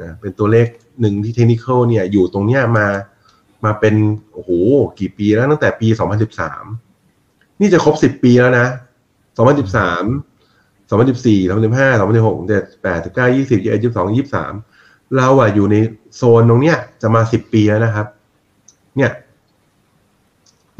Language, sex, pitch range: Thai, male, 100-120 Hz